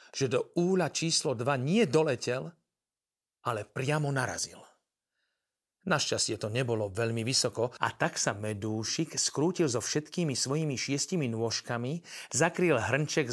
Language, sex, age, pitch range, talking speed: Slovak, male, 40-59, 120-150 Hz, 115 wpm